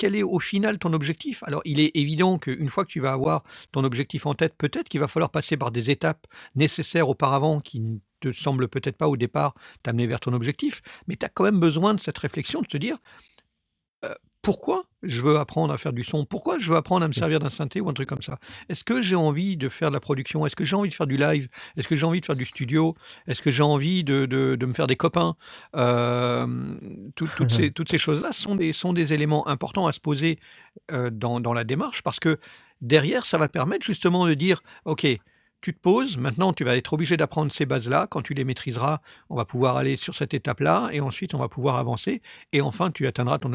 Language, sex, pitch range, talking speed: French, male, 125-165 Hz, 235 wpm